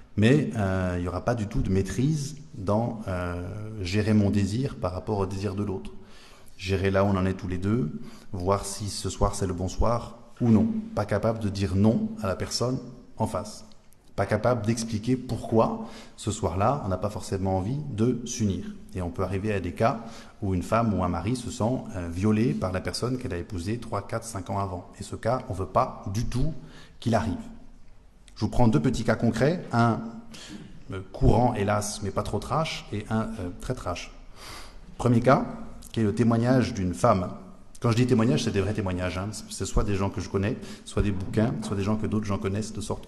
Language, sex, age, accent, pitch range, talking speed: French, male, 30-49, French, 95-120 Hz, 220 wpm